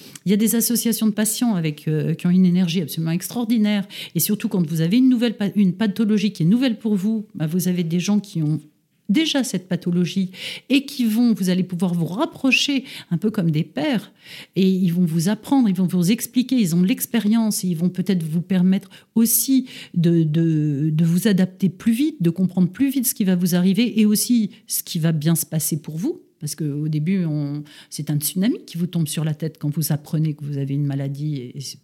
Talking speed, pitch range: 230 wpm, 170-235 Hz